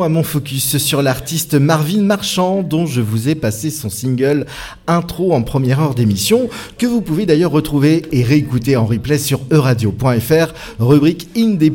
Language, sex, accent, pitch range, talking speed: French, male, French, 115-160 Hz, 165 wpm